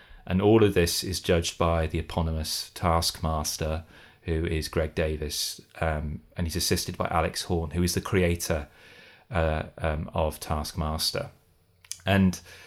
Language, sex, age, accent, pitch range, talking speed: English, male, 30-49, British, 85-95 Hz, 140 wpm